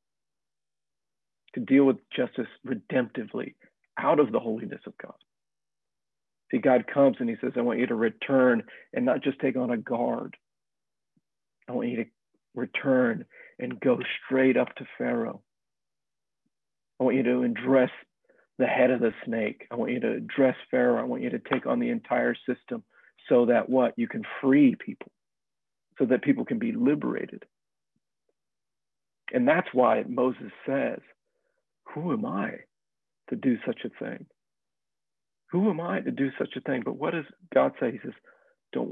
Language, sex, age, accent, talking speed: English, male, 50-69, American, 165 wpm